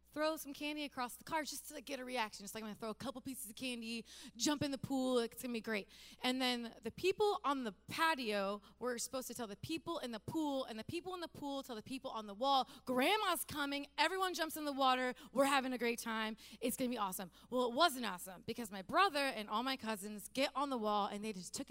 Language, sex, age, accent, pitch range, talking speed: English, female, 20-39, American, 220-285 Hz, 265 wpm